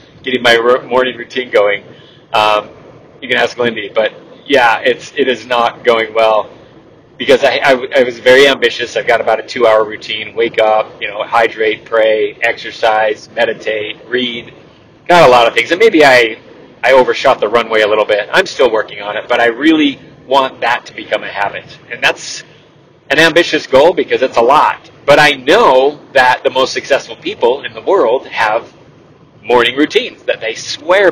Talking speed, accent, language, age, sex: 185 wpm, American, English, 30-49, male